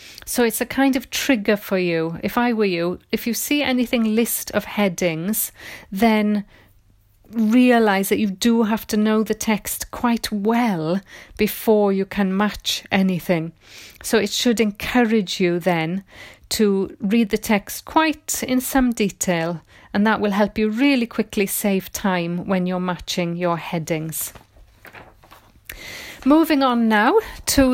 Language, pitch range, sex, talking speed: English, 185-230 Hz, female, 145 wpm